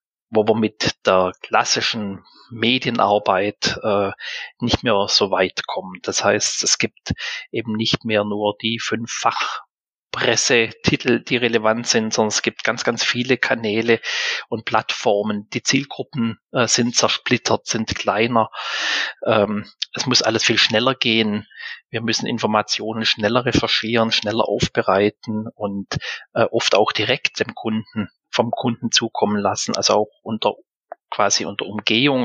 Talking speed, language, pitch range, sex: 135 wpm, German, 105-130 Hz, male